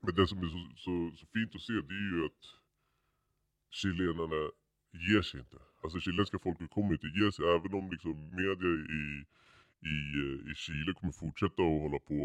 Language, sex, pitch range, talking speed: Swedish, female, 75-100 Hz, 185 wpm